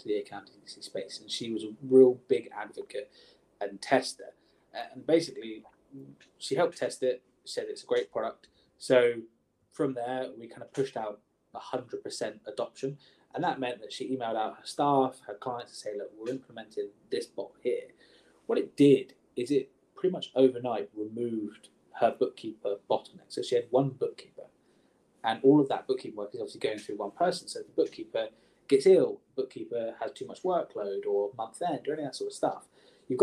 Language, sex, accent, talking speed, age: English, male, British, 185 wpm, 20-39